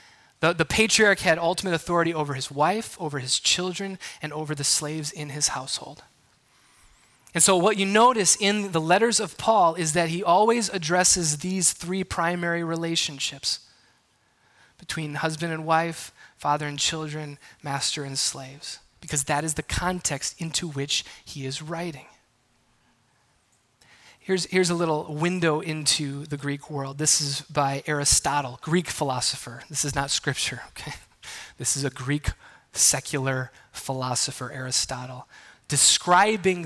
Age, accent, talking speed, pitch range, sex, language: 30-49, American, 140 wpm, 140-175 Hz, male, English